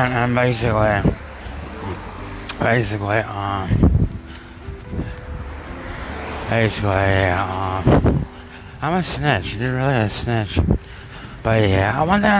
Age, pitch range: 20-39, 95-130 Hz